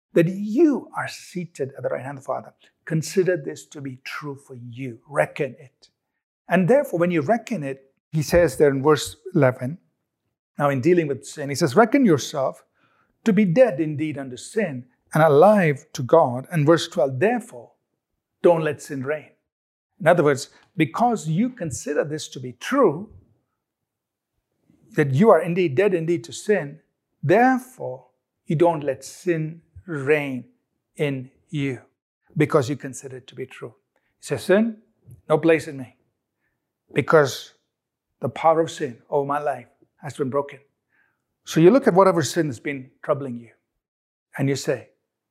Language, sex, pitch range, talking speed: English, male, 135-175 Hz, 165 wpm